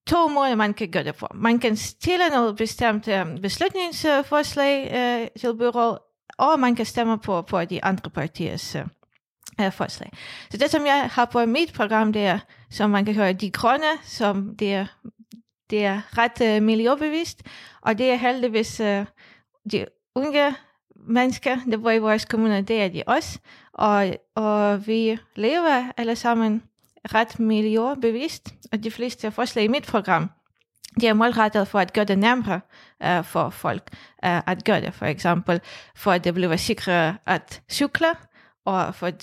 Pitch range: 195-235 Hz